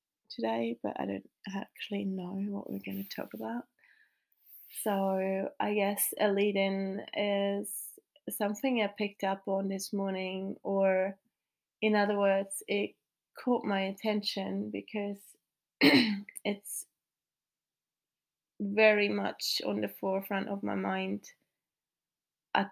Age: 20-39